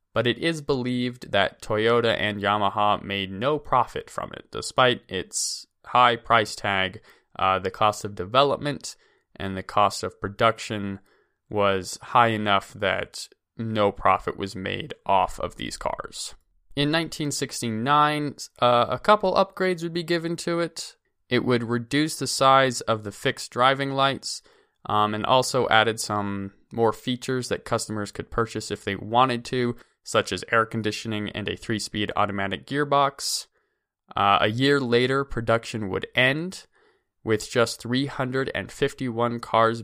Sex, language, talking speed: male, English, 145 wpm